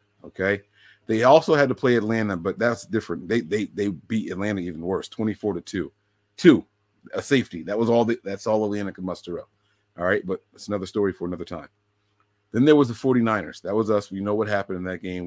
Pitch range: 95-120 Hz